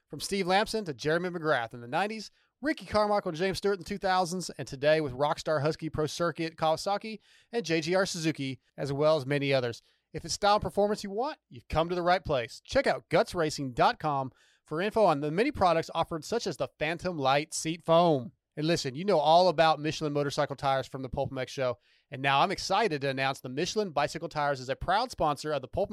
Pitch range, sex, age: 140-190 Hz, male, 30-49